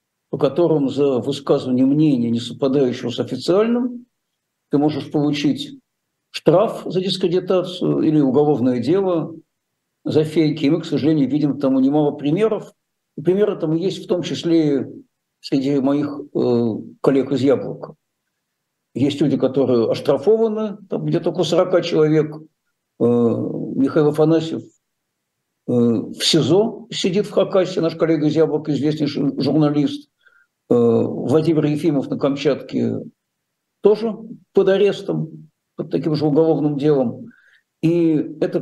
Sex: male